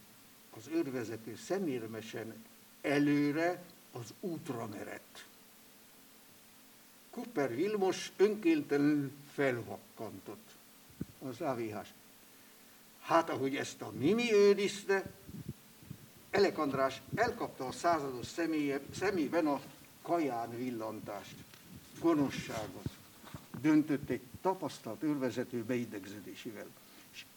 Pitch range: 125-185 Hz